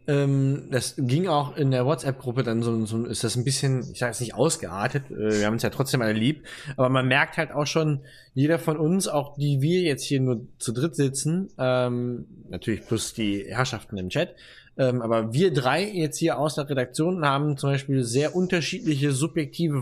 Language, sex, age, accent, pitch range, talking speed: German, male, 20-39, German, 125-155 Hz, 205 wpm